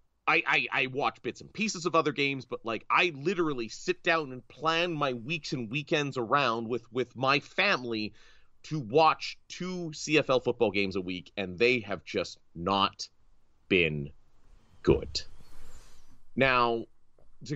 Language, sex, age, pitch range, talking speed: English, male, 30-49, 115-160 Hz, 150 wpm